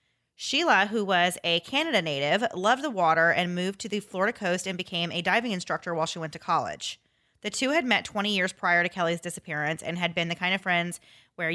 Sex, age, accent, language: female, 20-39, American, English